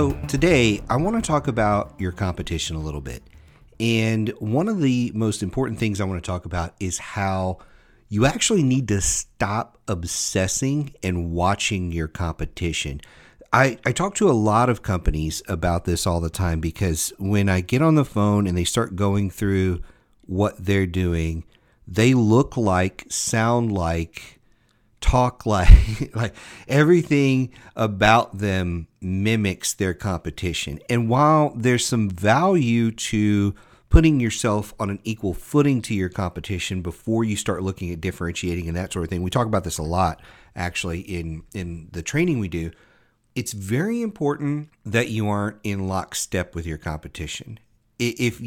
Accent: American